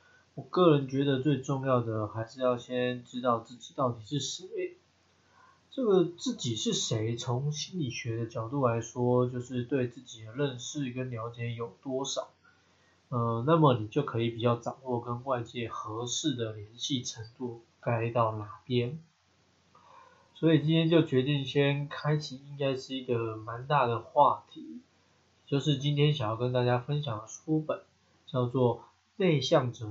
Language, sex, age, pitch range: Chinese, male, 20-39, 120-150 Hz